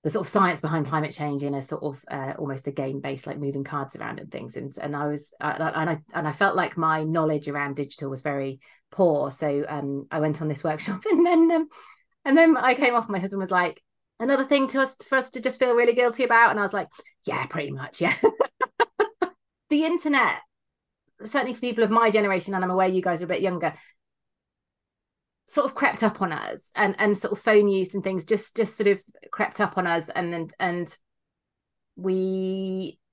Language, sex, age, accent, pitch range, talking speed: English, female, 30-49, British, 175-255 Hz, 220 wpm